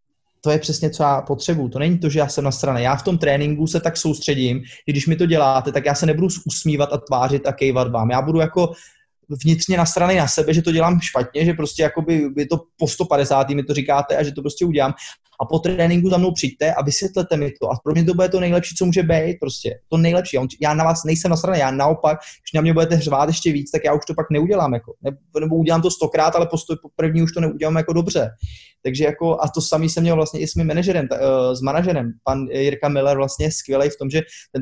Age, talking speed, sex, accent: 20-39, 250 wpm, male, native